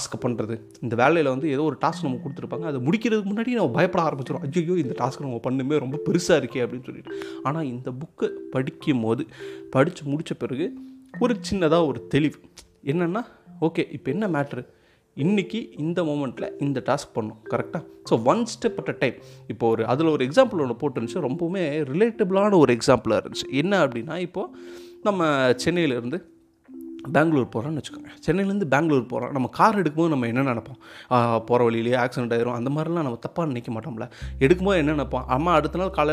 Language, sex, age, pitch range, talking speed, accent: Tamil, male, 30-49, 125-175 Hz, 170 wpm, native